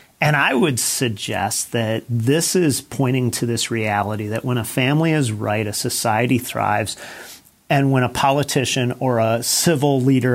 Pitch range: 115-140 Hz